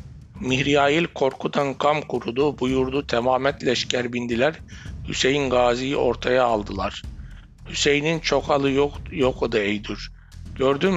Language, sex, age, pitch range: Turkish, male, 60-79, 105-135 Hz